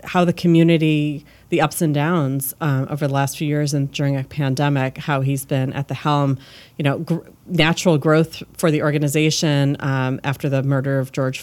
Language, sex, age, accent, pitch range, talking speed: English, female, 40-59, American, 140-165 Hz, 195 wpm